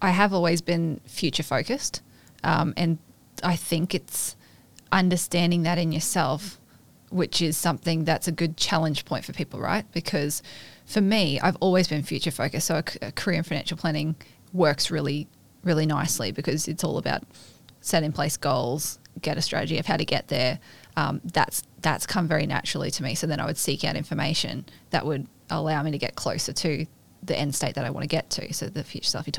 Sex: female